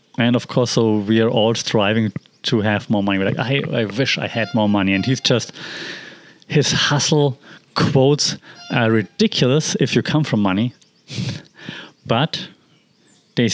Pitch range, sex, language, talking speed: 115-140 Hz, male, English, 160 wpm